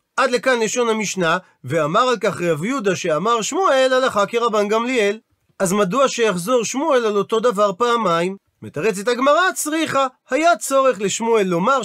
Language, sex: Hebrew, male